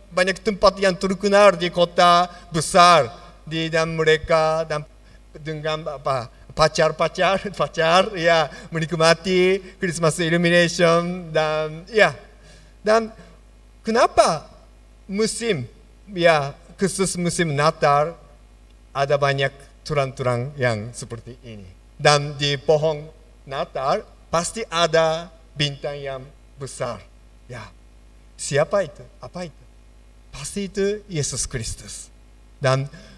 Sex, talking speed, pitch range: male, 95 wpm, 125-170 Hz